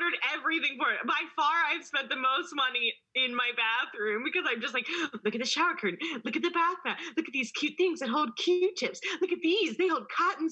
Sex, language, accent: female, English, American